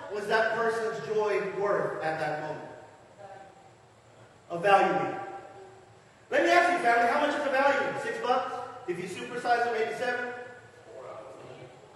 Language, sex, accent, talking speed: English, male, American, 145 wpm